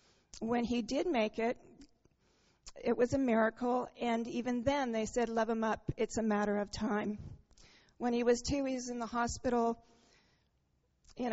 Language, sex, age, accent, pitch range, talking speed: English, female, 40-59, American, 230-290 Hz, 170 wpm